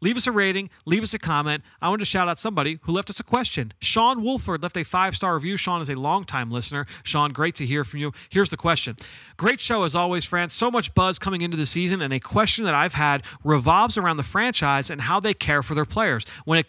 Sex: male